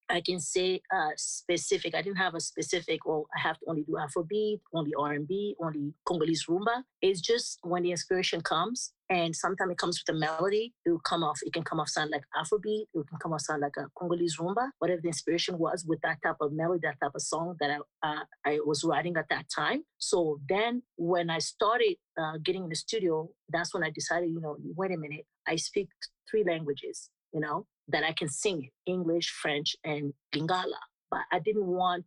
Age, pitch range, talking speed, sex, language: 30-49, 155-185 Hz, 215 wpm, female, English